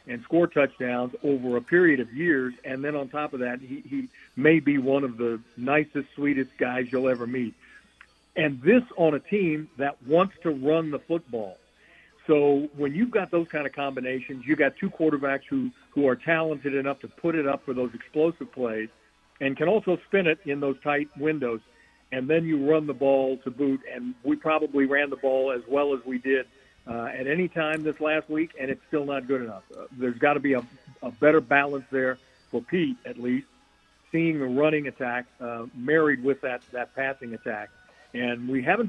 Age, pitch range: 50-69, 130-155 Hz